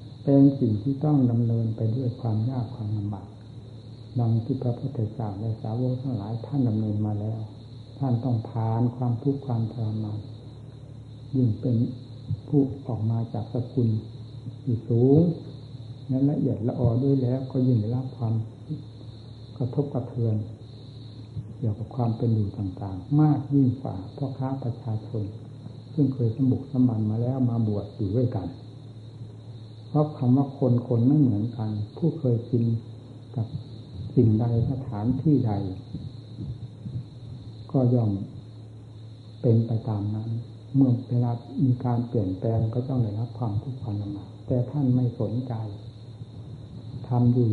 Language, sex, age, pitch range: Thai, male, 60-79, 110-125 Hz